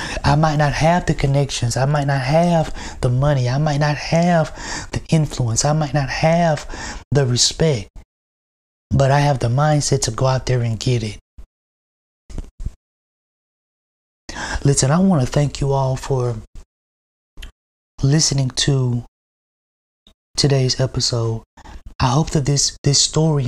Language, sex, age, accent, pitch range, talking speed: English, male, 30-49, American, 110-150 Hz, 140 wpm